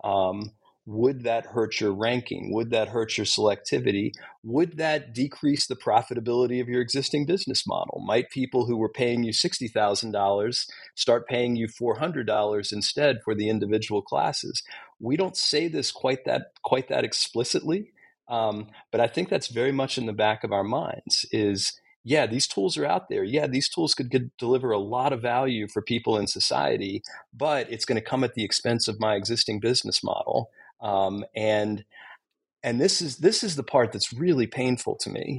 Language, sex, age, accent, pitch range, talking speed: English, male, 40-59, American, 105-130 Hz, 180 wpm